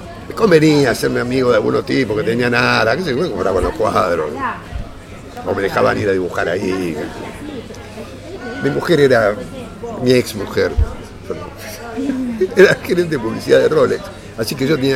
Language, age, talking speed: Spanish, 50-69, 155 wpm